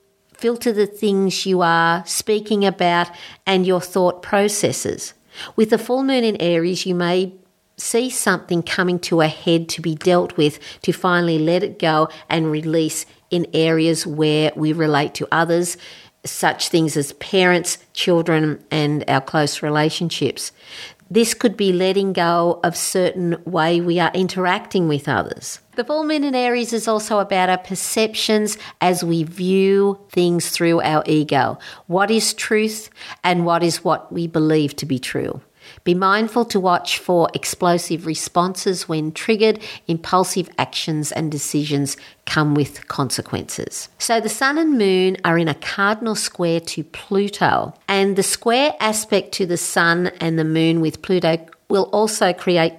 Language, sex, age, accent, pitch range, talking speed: English, female, 50-69, Australian, 160-200 Hz, 155 wpm